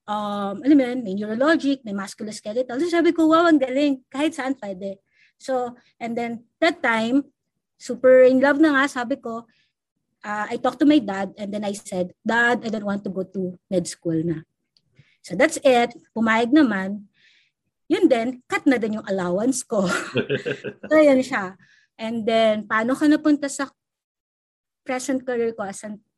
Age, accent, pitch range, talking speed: 20-39, Filipino, 200-265 Hz, 165 wpm